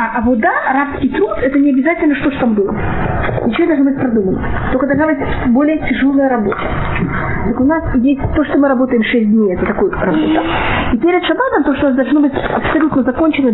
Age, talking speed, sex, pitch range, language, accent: 20-39, 210 wpm, female, 240-305 Hz, Russian, native